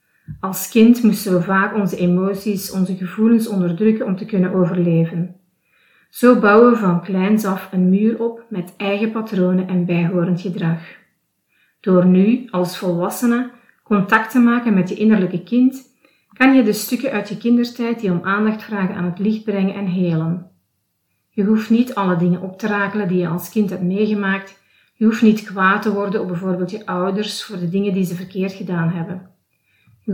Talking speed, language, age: 180 wpm, Dutch, 40-59